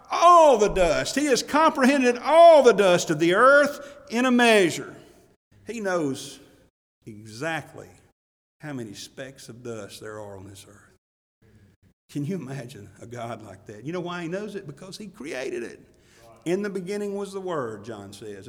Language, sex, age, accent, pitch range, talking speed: English, male, 50-69, American, 135-205 Hz, 170 wpm